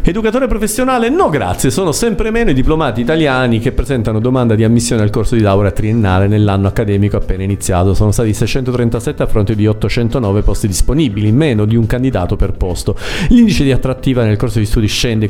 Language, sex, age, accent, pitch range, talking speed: Italian, male, 40-59, native, 110-135 Hz, 185 wpm